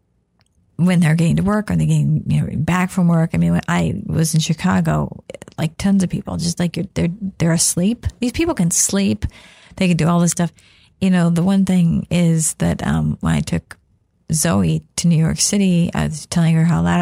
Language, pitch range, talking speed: English, 155-180 Hz, 220 wpm